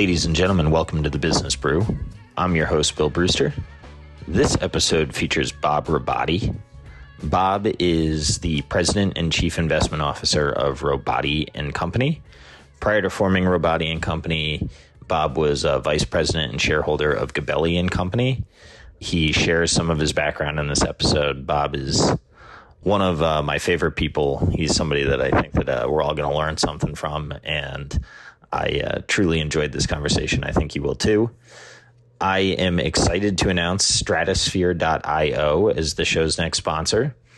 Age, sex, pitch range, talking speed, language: 30-49, male, 75-95 Hz, 160 wpm, English